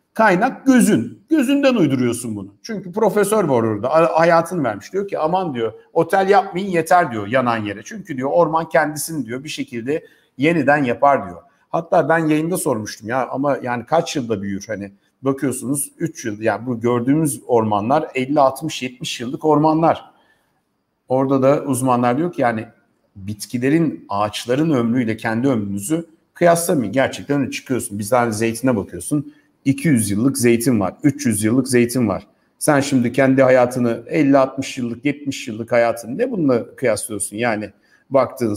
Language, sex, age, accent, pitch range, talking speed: Turkish, male, 60-79, native, 115-165 Hz, 145 wpm